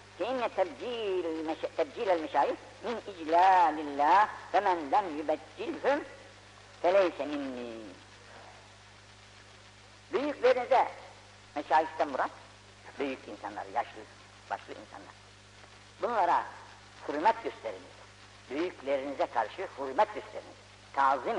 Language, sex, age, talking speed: Turkish, female, 60-79, 75 wpm